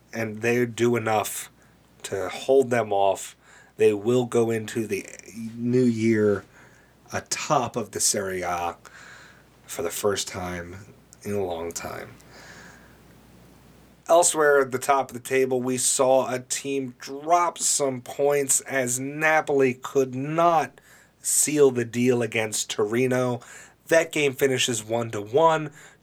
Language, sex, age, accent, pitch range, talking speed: English, male, 30-49, American, 110-135 Hz, 125 wpm